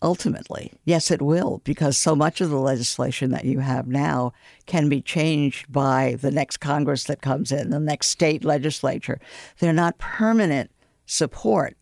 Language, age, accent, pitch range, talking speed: English, 60-79, American, 135-165 Hz, 165 wpm